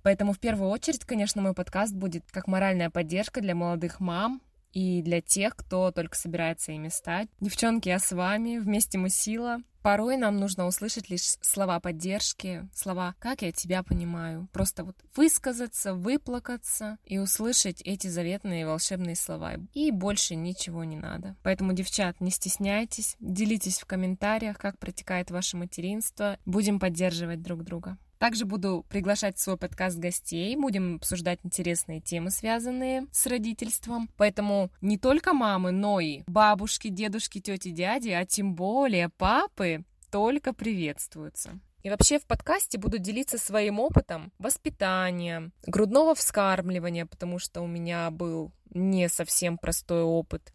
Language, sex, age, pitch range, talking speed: Russian, female, 20-39, 175-210 Hz, 145 wpm